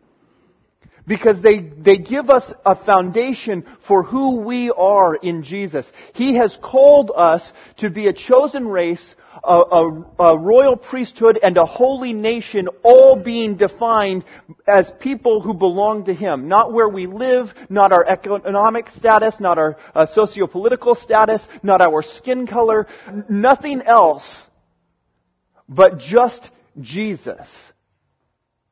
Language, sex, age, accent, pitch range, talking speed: English, male, 40-59, American, 155-220 Hz, 130 wpm